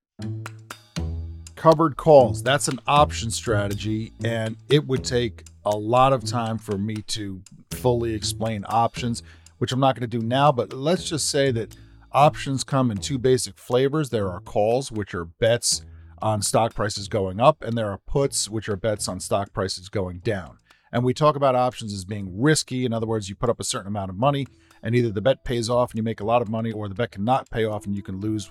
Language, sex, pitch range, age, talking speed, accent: English, male, 105-130 Hz, 40-59, 215 wpm, American